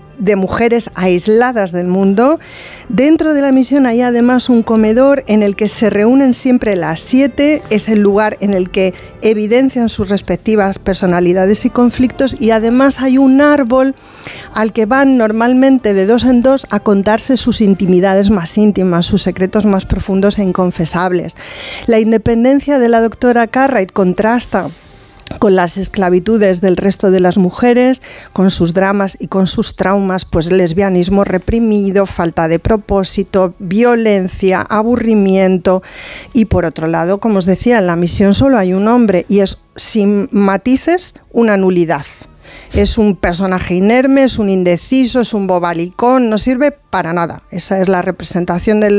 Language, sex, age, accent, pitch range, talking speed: Spanish, female, 40-59, Spanish, 185-240 Hz, 155 wpm